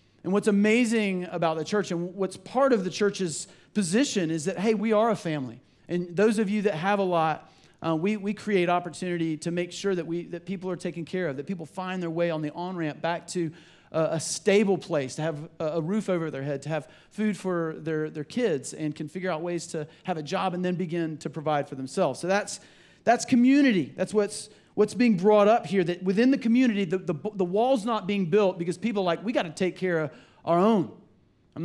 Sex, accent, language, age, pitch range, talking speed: male, American, English, 40-59, 165-210 Hz, 235 wpm